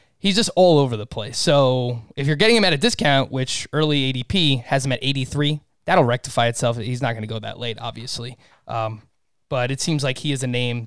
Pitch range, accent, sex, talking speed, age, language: 125-155 Hz, American, male, 225 wpm, 20-39, English